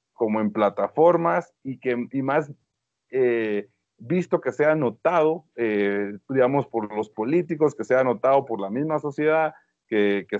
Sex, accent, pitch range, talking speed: male, Mexican, 115-160 Hz, 150 wpm